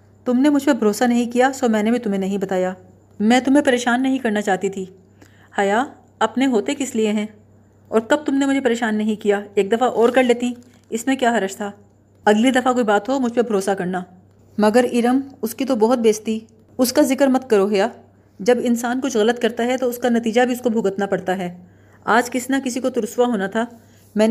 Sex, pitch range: female, 200-250 Hz